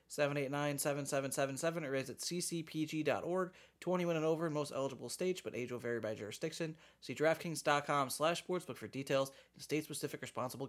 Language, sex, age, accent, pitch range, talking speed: English, male, 30-49, American, 130-165 Hz, 145 wpm